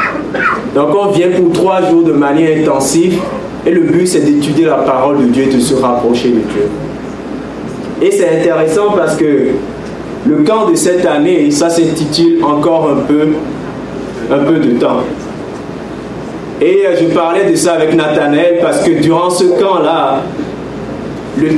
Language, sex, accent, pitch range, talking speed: French, male, French, 135-170 Hz, 160 wpm